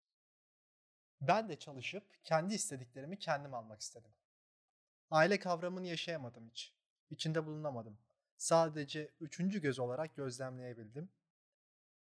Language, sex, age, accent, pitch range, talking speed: Turkish, male, 30-49, native, 125-170 Hz, 95 wpm